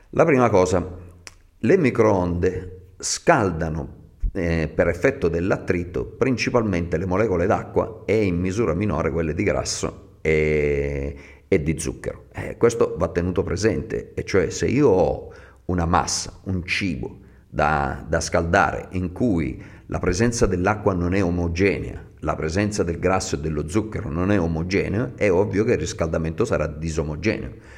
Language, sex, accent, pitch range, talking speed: Italian, male, native, 80-105 Hz, 145 wpm